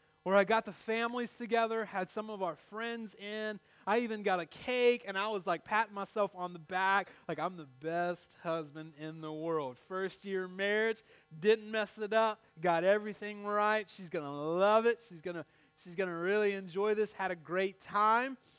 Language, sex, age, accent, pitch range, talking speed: English, male, 30-49, American, 170-220 Hz, 195 wpm